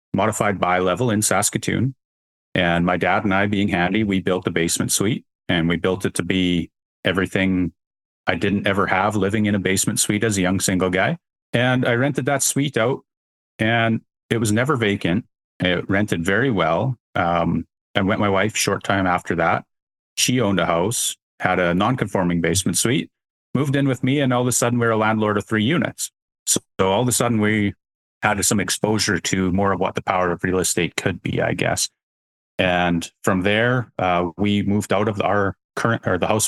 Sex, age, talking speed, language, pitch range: male, 40-59, 205 wpm, English, 90-110 Hz